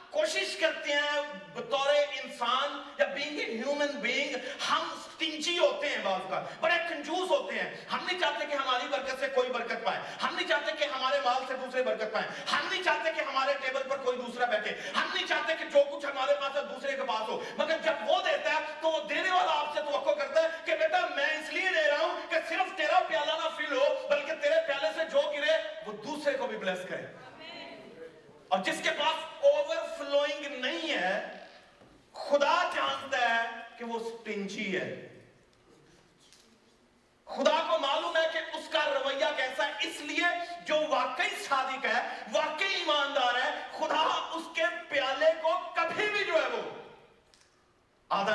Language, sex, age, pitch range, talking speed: Urdu, male, 40-59, 280-325 Hz, 130 wpm